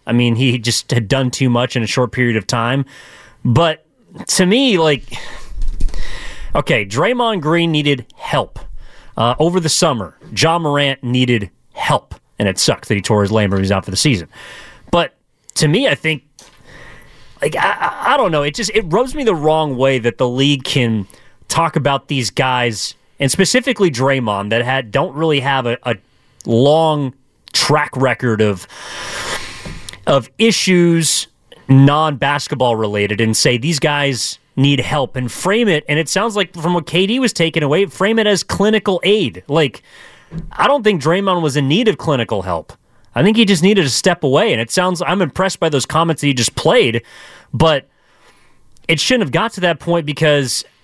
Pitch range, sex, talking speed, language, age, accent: 120-165 Hz, male, 180 wpm, English, 30-49, American